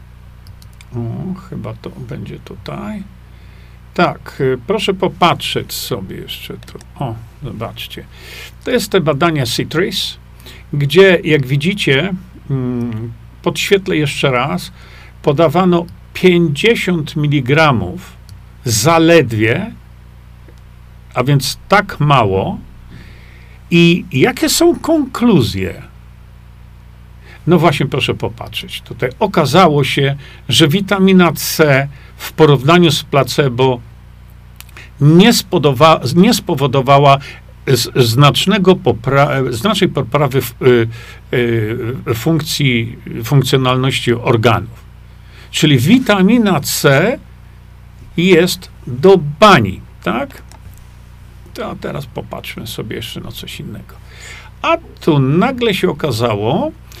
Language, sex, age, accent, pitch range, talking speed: Polish, male, 50-69, native, 115-170 Hz, 90 wpm